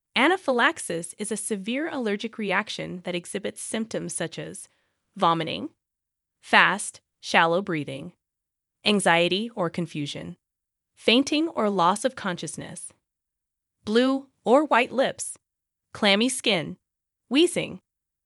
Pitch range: 180-265 Hz